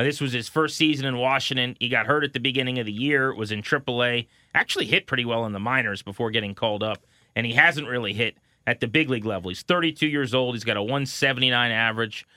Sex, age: male, 30-49